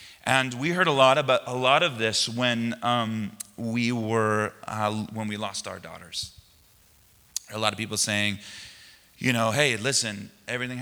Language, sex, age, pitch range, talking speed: English, male, 30-49, 100-130 Hz, 165 wpm